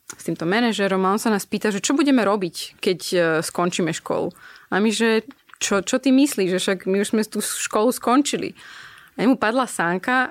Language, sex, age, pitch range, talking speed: Slovak, female, 20-39, 180-230 Hz, 190 wpm